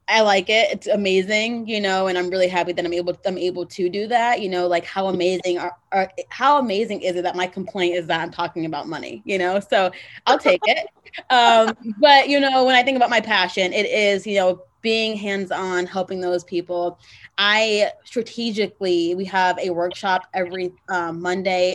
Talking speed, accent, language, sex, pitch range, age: 205 wpm, American, English, female, 180-215 Hz, 20-39